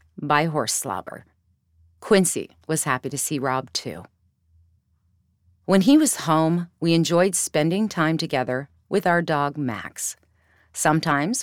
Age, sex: 40-59, female